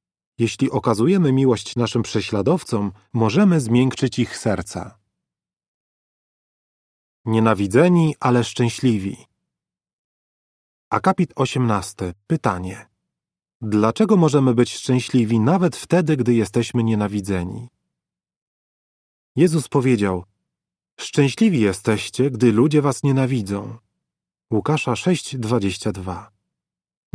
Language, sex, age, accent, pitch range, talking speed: Polish, male, 30-49, native, 110-145 Hz, 75 wpm